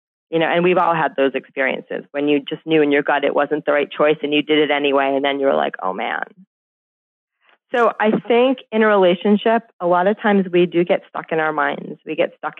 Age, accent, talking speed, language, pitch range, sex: 30-49, American, 250 wpm, English, 155-195 Hz, female